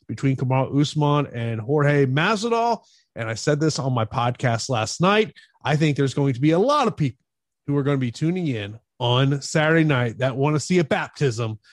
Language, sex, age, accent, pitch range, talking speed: English, male, 30-49, American, 130-170 Hz, 210 wpm